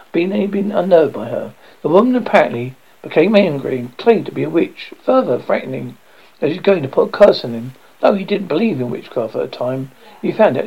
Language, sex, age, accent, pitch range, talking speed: English, male, 60-79, British, 135-195 Hz, 220 wpm